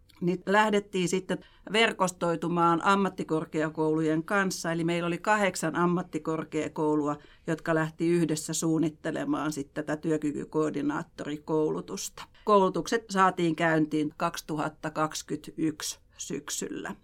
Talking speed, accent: 80 wpm, native